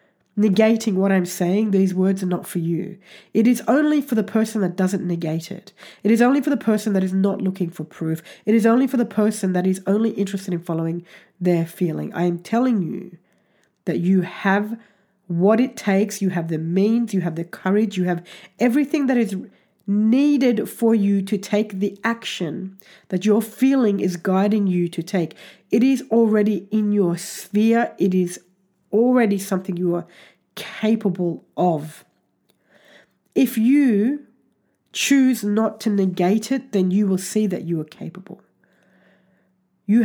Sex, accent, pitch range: female, Australian, 180-220 Hz